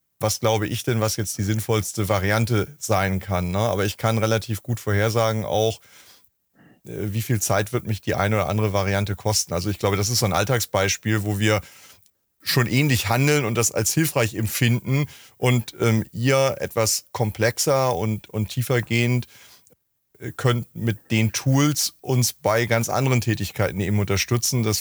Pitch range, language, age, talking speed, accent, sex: 105-125 Hz, German, 30-49, 160 wpm, German, male